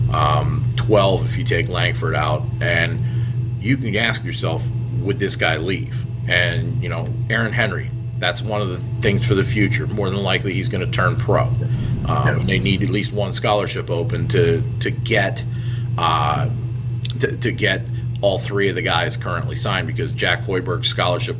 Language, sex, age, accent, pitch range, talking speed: English, male, 40-59, American, 120-125 Hz, 175 wpm